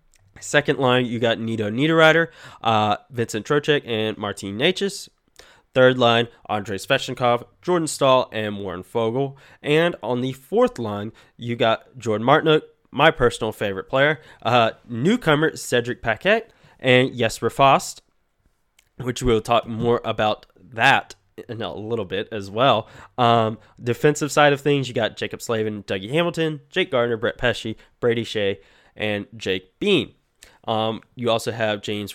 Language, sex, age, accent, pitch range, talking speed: English, male, 20-39, American, 110-145 Hz, 145 wpm